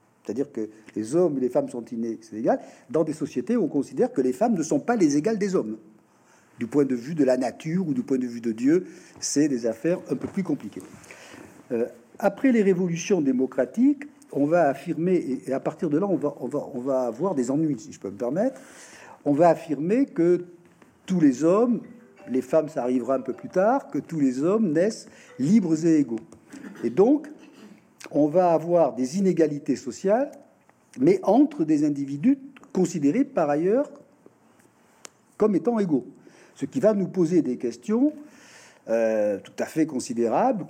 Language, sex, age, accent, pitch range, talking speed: French, male, 50-69, French, 140-230 Hz, 190 wpm